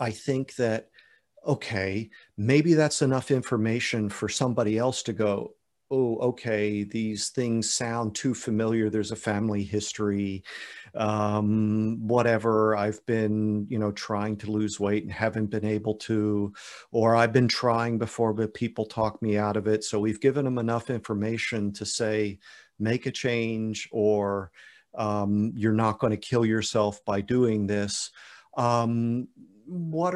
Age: 50-69